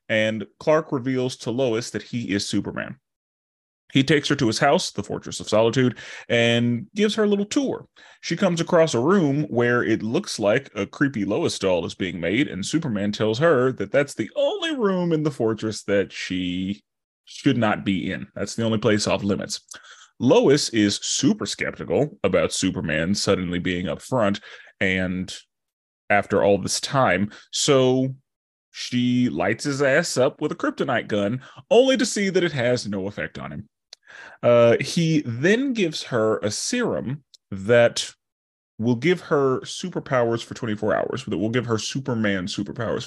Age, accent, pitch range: 30-49, American, 105-145 Hz